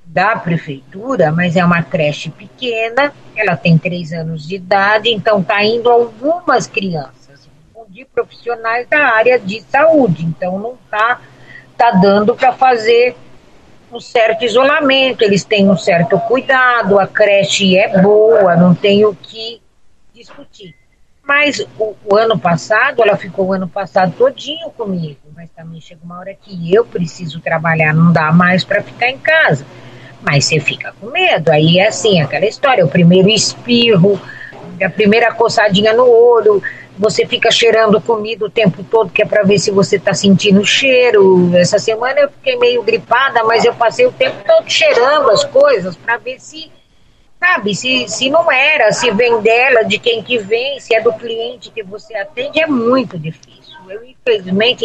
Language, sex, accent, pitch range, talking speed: Portuguese, female, Brazilian, 185-245 Hz, 165 wpm